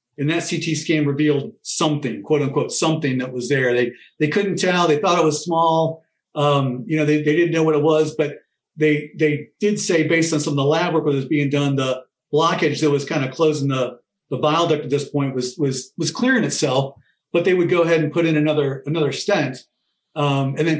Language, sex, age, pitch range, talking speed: English, male, 50-69, 135-155 Hz, 230 wpm